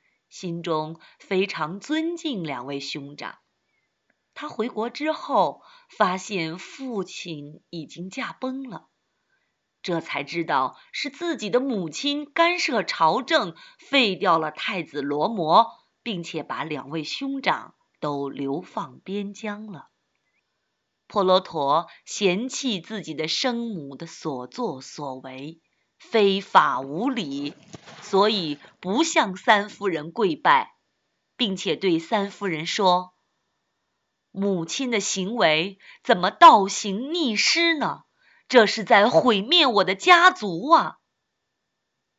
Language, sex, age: Chinese, female, 30-49